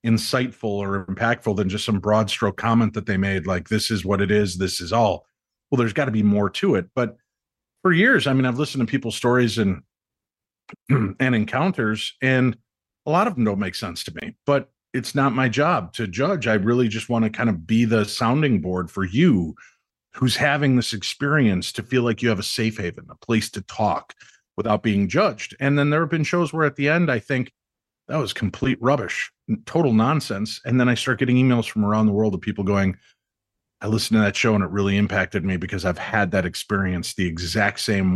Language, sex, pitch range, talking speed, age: English, male, 100-120 Hz, 220 wpm, 40-59